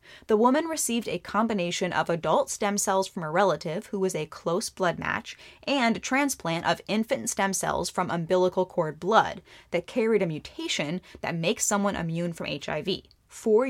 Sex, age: female, 10-29